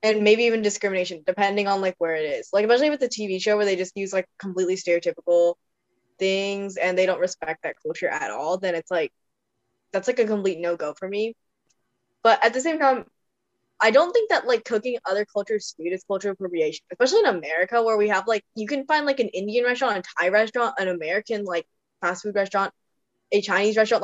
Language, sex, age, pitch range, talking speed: English, female, 10-29, 175-215 Hz, 210 wpm